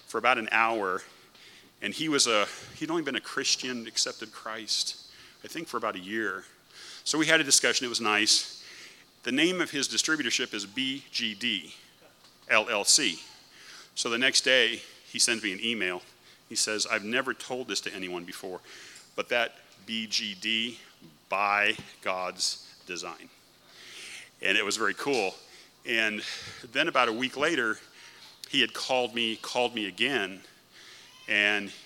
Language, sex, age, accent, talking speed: English, male, 40-59, American, 150 wpm